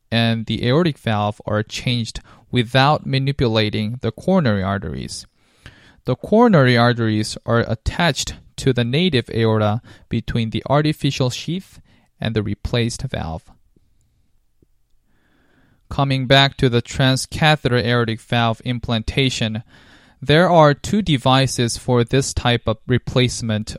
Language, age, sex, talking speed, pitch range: English, 20-39, male, 115 wpm, 110-130 Hz